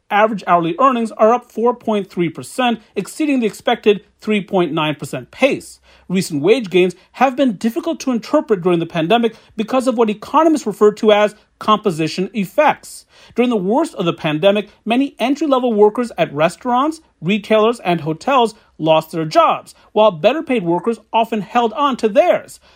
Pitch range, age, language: 180-250 Hz, 40-59, English